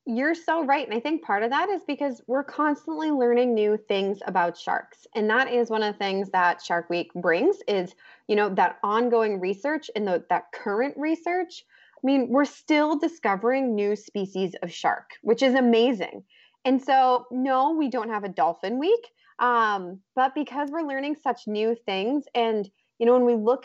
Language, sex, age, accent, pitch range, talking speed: English, female, 20-39, American, 195-265 Hz, 190 wpm